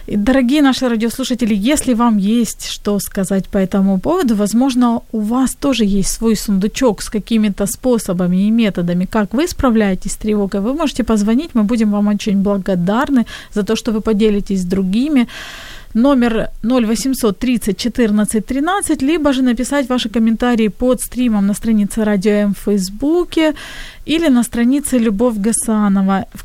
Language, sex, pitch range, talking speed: Ukrainian, female, 210-255 Hz, 150 wpm